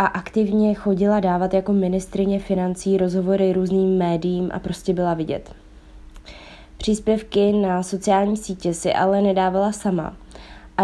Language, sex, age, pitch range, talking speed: Czech, female, 20-39, 185-205 Hz, 125 wpm